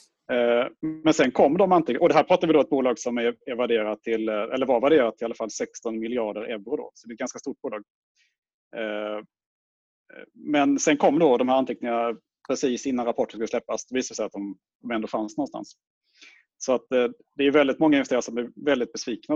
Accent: Norwegian